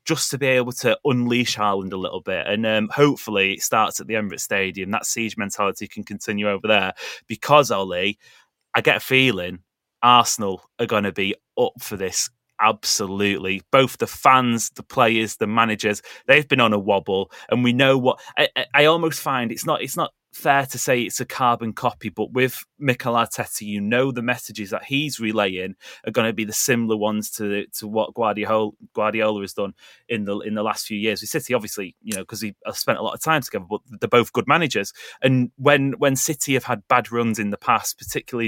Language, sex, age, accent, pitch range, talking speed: English, male, 20-39, British, 105-130 Hz, 210 wpm